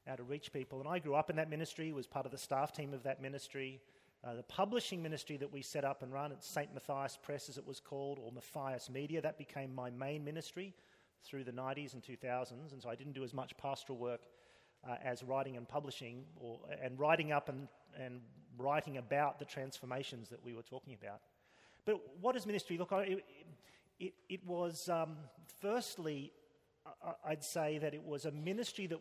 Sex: male